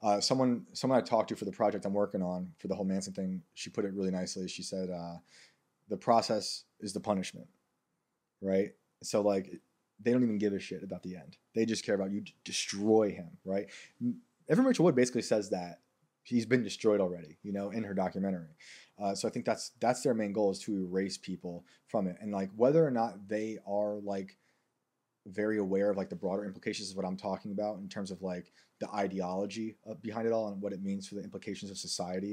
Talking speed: 220 wpm